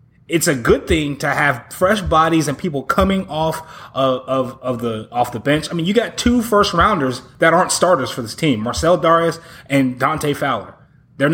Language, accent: English, American